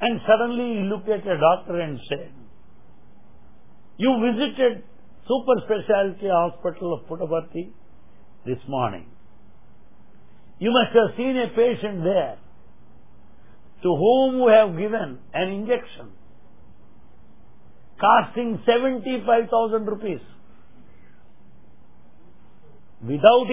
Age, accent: 60-79, Indian